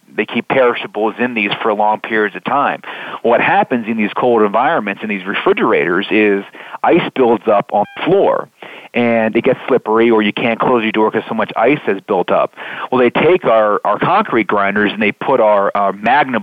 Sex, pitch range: male, 105-125 Hz